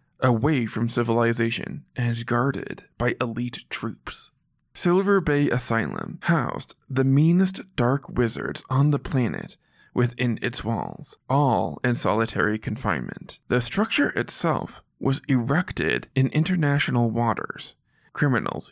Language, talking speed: English, 110 wpm